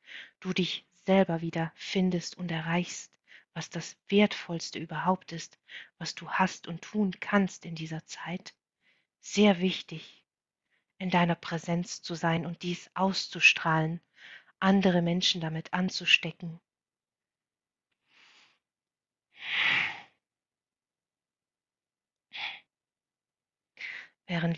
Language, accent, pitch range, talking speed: German, German, 165-185 Hz, 90 wpm